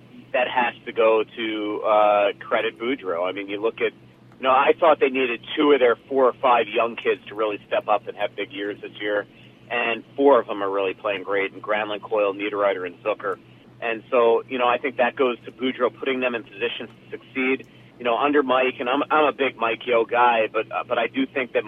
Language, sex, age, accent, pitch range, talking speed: English, male, 40-59, American, 110-125 Hz, 240 wpm